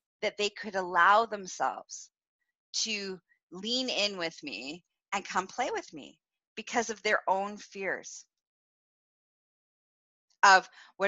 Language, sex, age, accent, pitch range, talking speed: English, female, 40-59, American, 190-255 Hz, 120 wpm